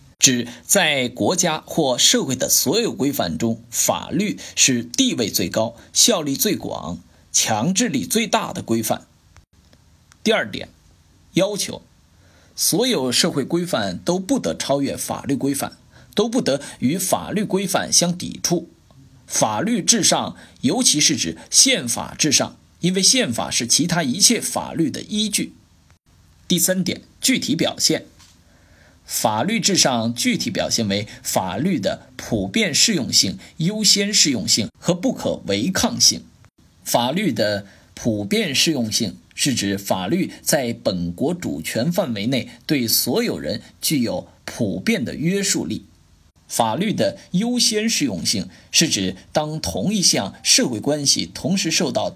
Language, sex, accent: Chinese, male, native